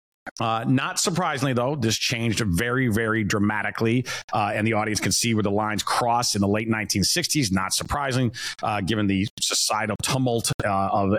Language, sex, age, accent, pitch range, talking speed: English, male, 40-59, American, 105-130 Hz, 165 wpm